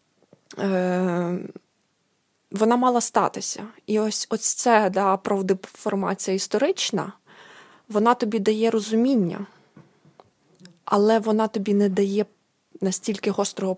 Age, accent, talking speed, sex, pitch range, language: 20-39, native, 95 wpm, female, 190-215 Hz, Ukrainian